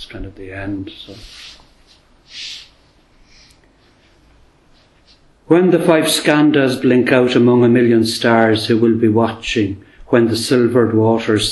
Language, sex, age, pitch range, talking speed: English, male, 60-79, 110-120 Hz, 120 wpm